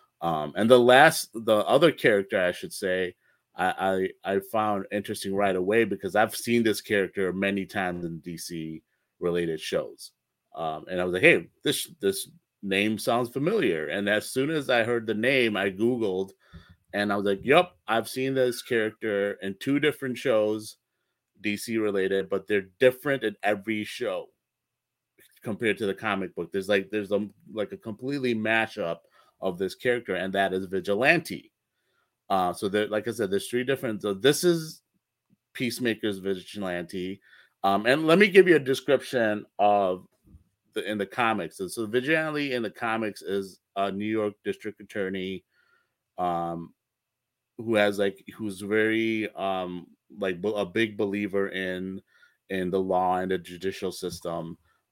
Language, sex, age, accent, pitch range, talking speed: English, male, 30-49, American, 95-115 Hz, 160 wpm